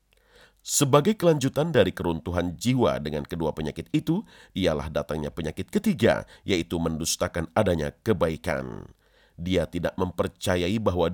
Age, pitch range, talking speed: 40-59, 80-120 Hz, 115 wpm